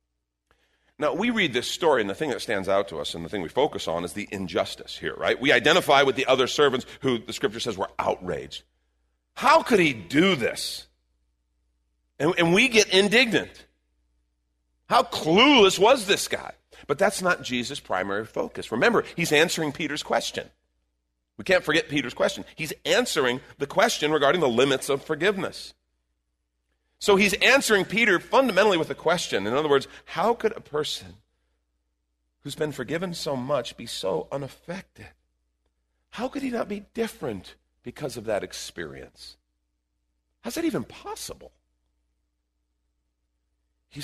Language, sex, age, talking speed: English, male, 40-59, 155 wpm